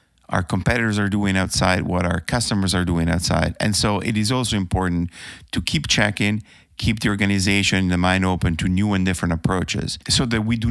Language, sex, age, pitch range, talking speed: English, male, 50-69, 95-115 Hz, 195 wpm